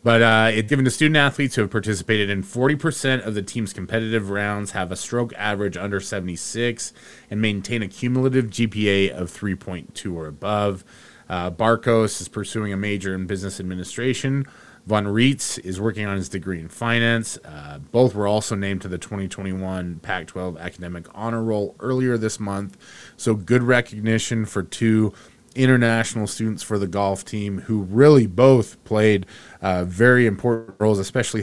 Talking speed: 160 wpm